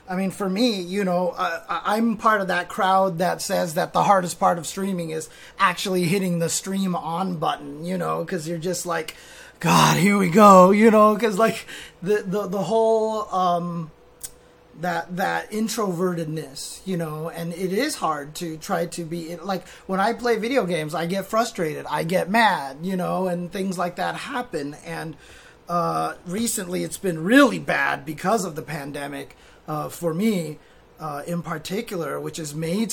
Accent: American